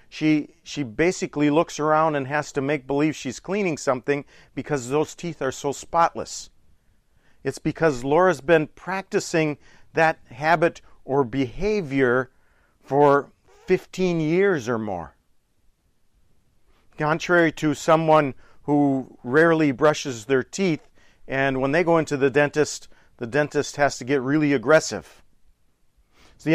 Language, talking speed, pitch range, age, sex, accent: English, 125 wpm, 135-170 Hz, 40-59, male, American